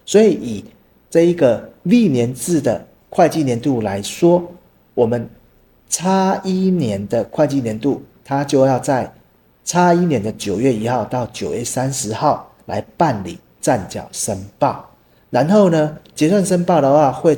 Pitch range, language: 110-165 Hz, Chinese